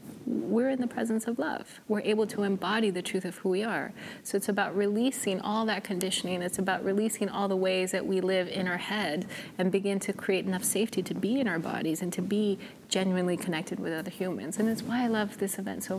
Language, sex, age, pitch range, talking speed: English, female, 30-49, 190-225 Hz, 235 wpm